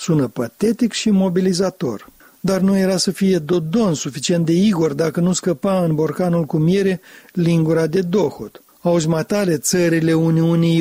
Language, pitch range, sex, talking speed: Romanian, 155-205 Hz, male, 145 wpm